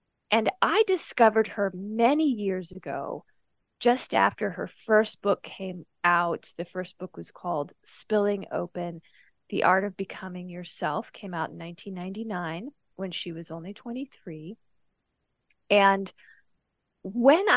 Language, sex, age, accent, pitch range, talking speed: English, female, 30-49, American, 175-220 Hz, 125 wpm